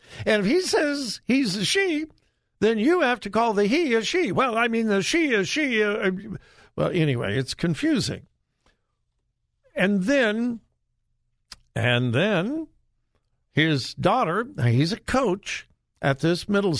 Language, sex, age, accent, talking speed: English, male, 60-79, American, 145 wpm